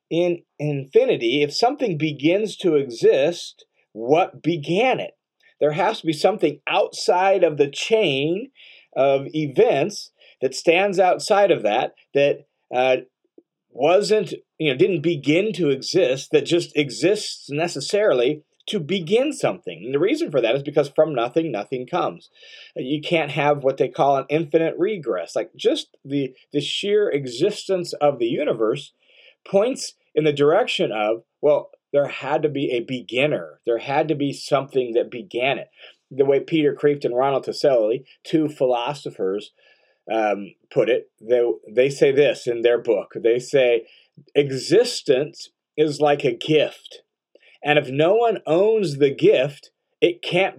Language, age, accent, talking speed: English, 40-59, American, 150 wpm